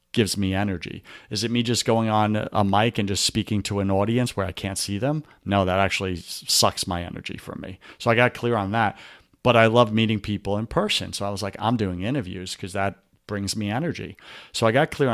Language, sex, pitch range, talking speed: English, male, 100-125 Hz, 235 wpm